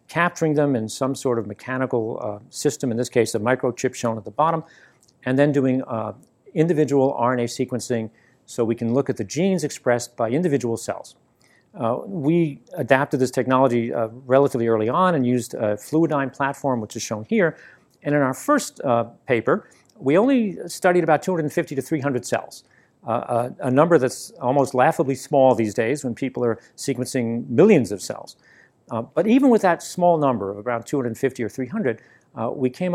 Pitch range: 120-150 Hz